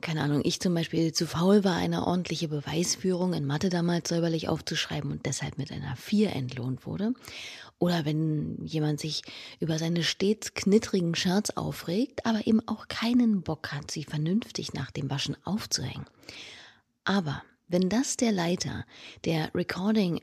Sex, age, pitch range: female, 30-49, 150-195 Hz